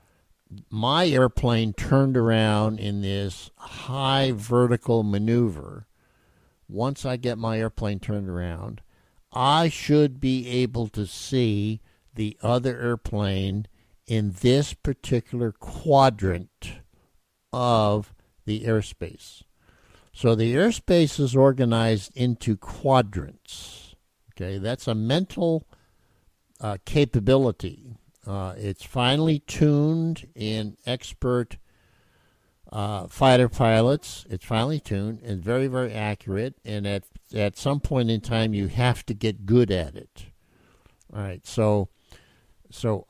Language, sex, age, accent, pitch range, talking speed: English, male, 60-79, American, 100-125 Hz, 110 wpm